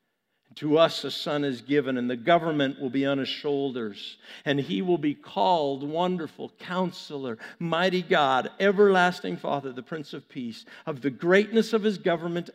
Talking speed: 165 wpm